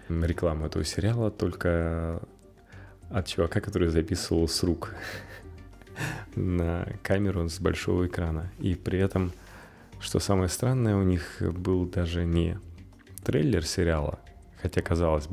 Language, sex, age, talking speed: Russian, male, 30-49, 115 wpm